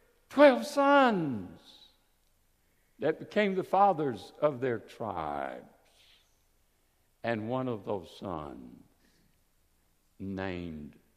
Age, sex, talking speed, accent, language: 60-79, male, 80 wpm, American, English